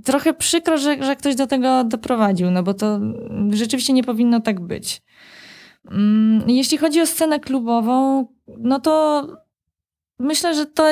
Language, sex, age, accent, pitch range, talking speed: Polish, female, 20-39, native, 185-250 Hz, 145 wpm